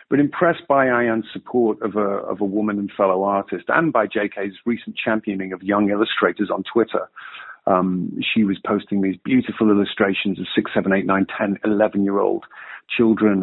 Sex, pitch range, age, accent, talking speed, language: male, 100-125 Hz, 50-69, British, 170 wpm, English